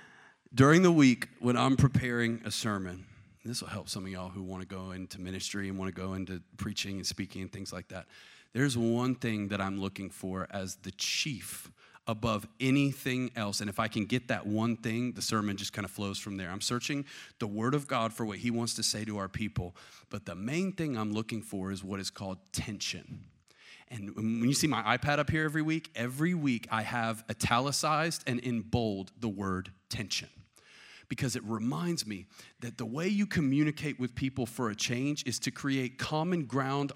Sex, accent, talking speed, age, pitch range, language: male, American, 210 wpm, 30-49, 105-140 Hz, English